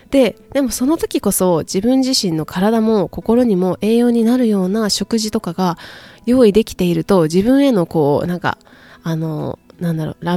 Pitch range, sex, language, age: 165-225 Hz, female, Japanese, 20-39